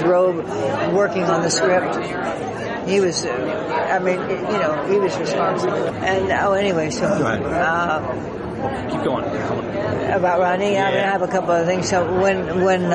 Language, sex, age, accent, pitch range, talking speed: English, female, 60-79, American, 165-190 Hz, 155 wpm